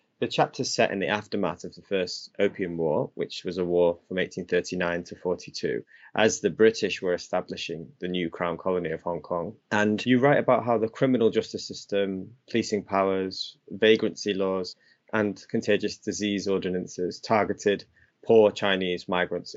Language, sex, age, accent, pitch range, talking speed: English, male, 20-39, British, 85-100 Hz, 165 wpm